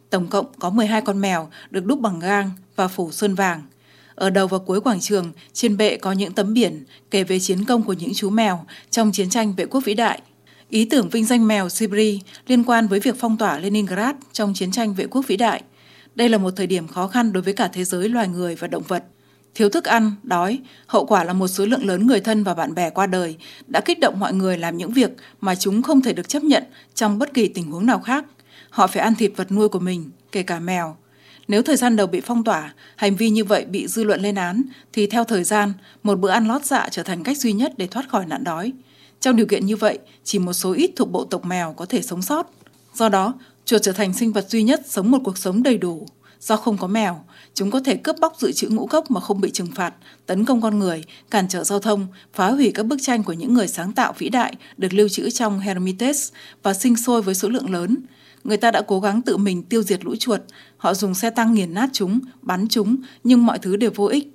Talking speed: 255 wpm